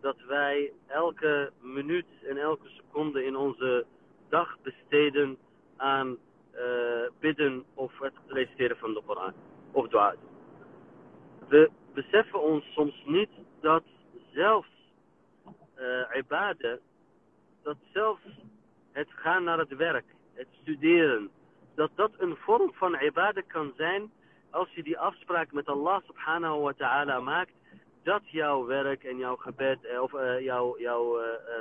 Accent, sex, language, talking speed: Dutch, male, Dutch, 130 wpm